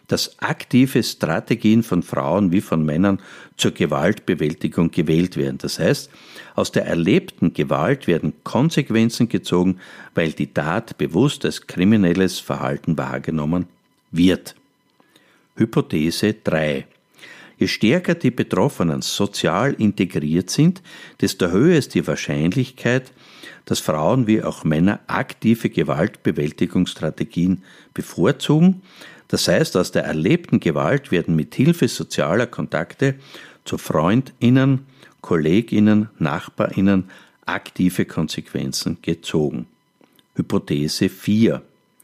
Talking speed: 105 wpm